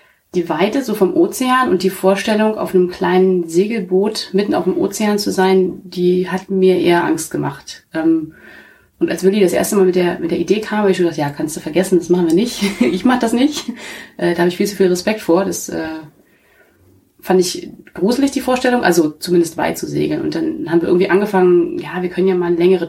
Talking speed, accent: 220 wpm, German